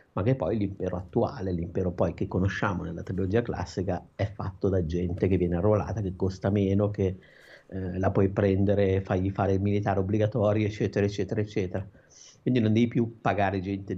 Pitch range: 95-115 Hz